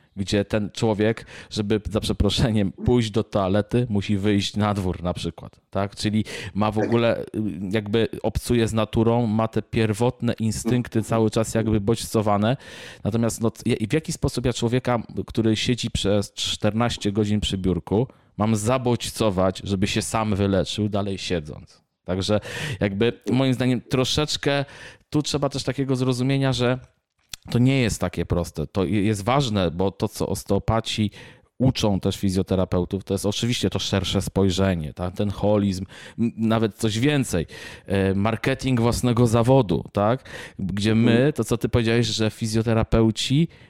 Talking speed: 145 wpm